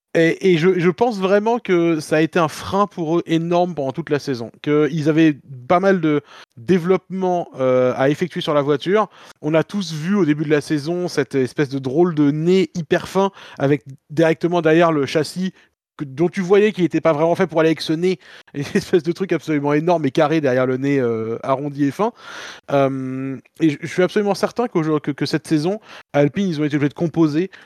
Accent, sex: French, male